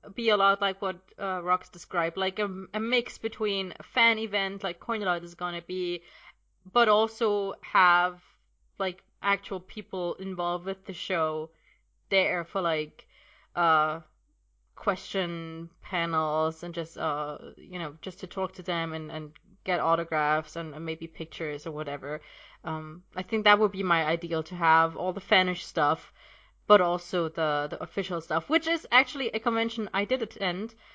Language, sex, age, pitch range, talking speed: English, female, 20-39, 175-220 Hz, 165 wpm